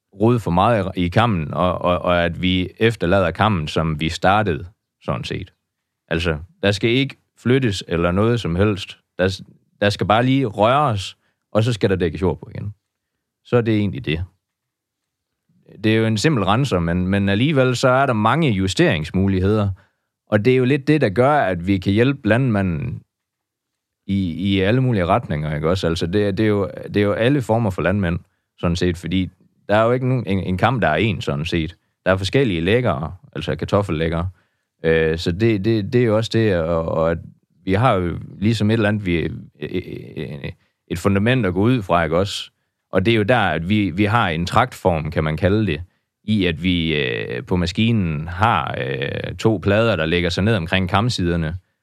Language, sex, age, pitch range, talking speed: Danish, male, 30-49, 90-115 Hz, 195 wpm